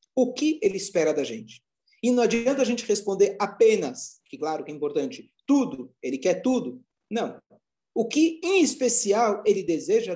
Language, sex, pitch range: Portuguese, male, 175-235 Hz